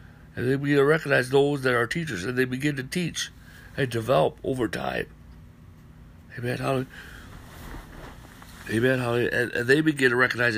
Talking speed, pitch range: 160 wpm, 120-140 Hz